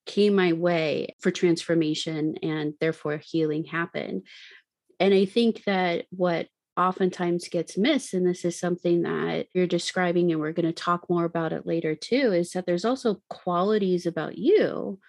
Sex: female